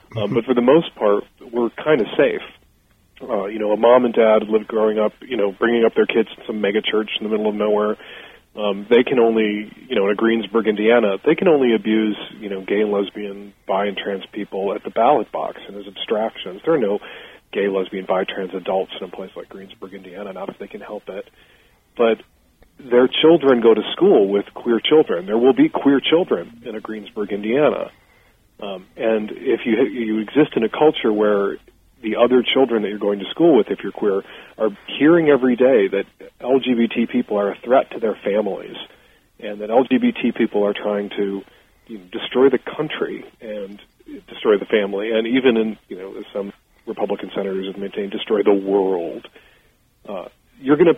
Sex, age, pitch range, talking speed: male, 40-59, 100-120 Hz, 200 wpm